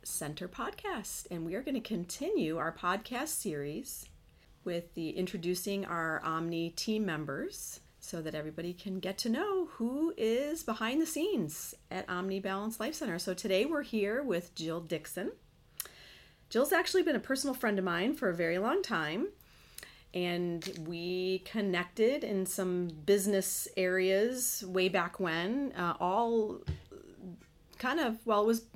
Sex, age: female, 40-59